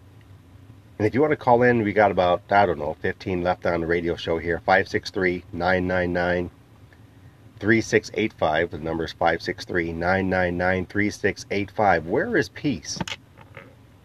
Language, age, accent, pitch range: English, 40-59, American, 90-115 Hz